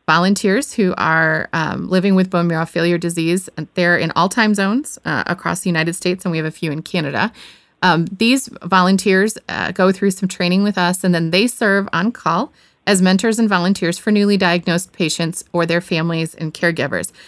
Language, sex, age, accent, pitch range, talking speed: English, female, 30-49, American, 160-195 Hz, 195 wpm